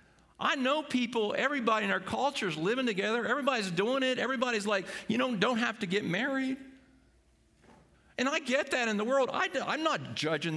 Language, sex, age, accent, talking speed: English, male, 50-69, American, 200 wpm